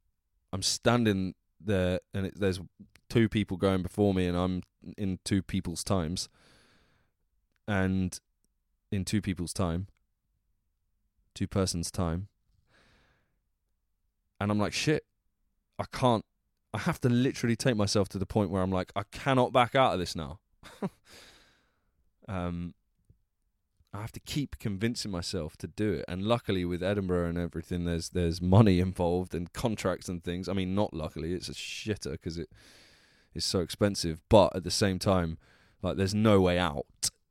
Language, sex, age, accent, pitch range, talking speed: English, male, 20-39, British, 85-100 Hz, 150 wpm